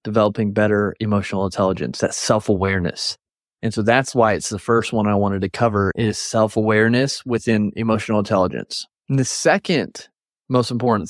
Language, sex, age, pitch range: English, male, 30-49, 105-130 Hz